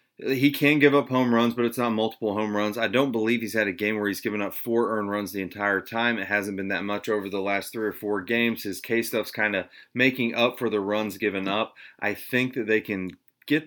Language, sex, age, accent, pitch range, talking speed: English, male, 30-49, American, 100-120 Hz, 260 wpm